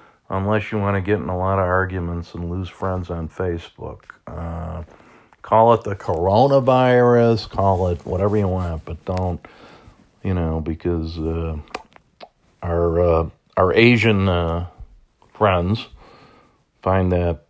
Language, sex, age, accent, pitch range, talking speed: English, male, 40-59, American, 85-105 Hz, 135 wpm